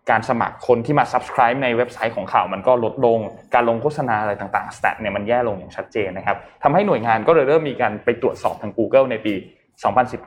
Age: 20-39